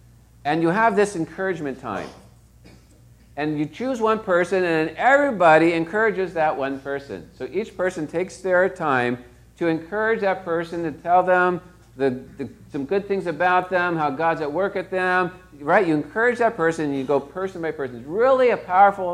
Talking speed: 175 wpm